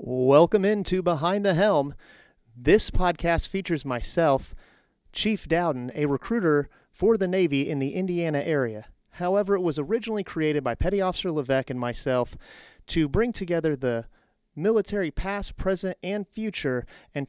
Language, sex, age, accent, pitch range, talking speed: English, male, 30-49, American, 130-185 Hz, 140 wpm